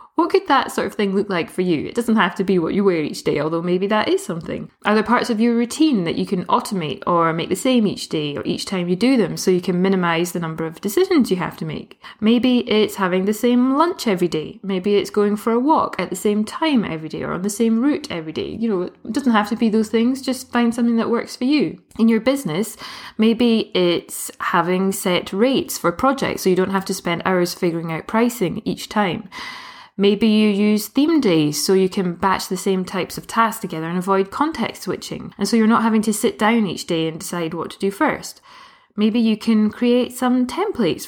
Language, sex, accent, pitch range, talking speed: English, female, British, 185-240 Hz, 240 wpm